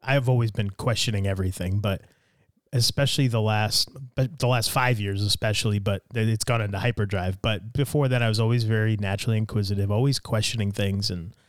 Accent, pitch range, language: American, 105-130 Hz, English